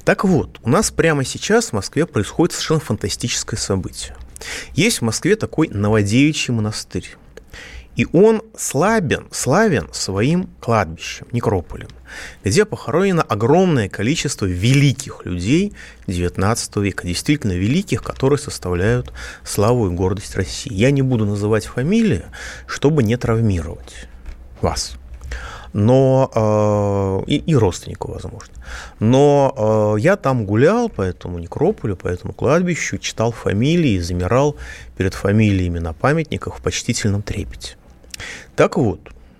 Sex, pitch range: male, 95-145 Hz